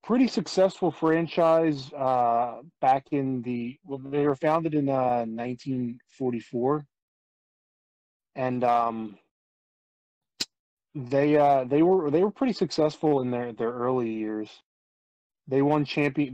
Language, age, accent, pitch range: English, 30-49, American, 115-145 Hz